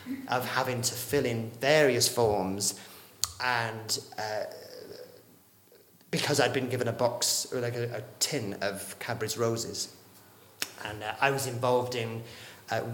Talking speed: 140 wpm